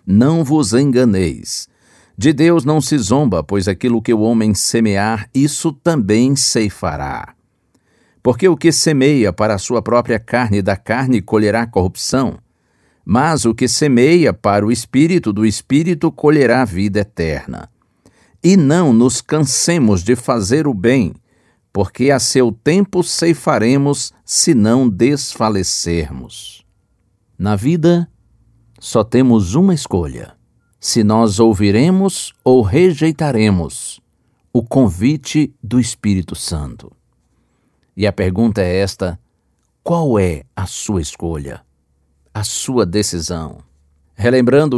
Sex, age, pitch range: male, 50-69, 100-145 Hz